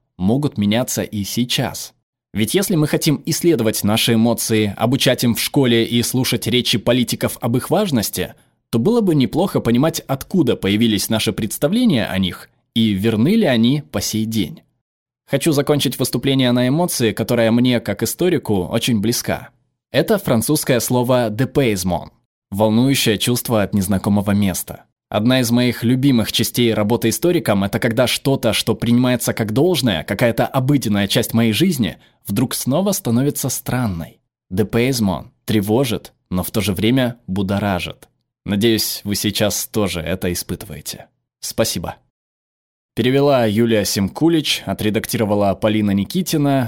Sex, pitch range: male, 105-130 Hz